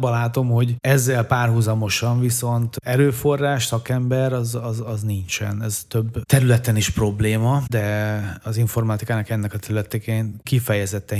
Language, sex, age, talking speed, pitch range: Hungarian, male, 30-49, 130 wpm, 105-125 Hz